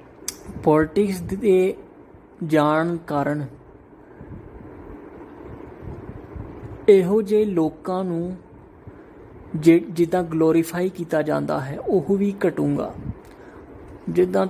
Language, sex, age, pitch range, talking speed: Punjabi, male, 20-39, 150-185 Hz, 70 wpm